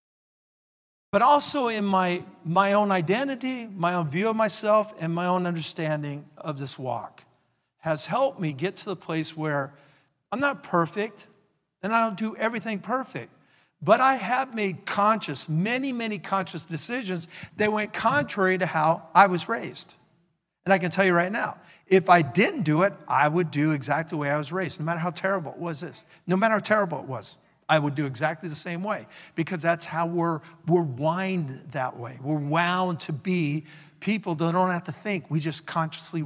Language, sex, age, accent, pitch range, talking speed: English, male, 50-69, American, 155-200 Hz, 190 wpm